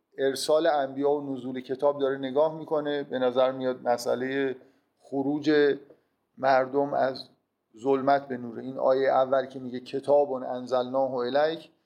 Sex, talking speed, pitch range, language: male, 130 wpm, 130-160 Hz, Persian